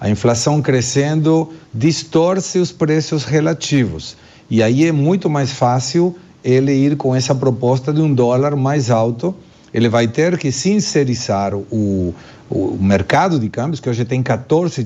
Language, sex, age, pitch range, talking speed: Portuguese, male, 50-69, 125-165 Hz, 150 wpm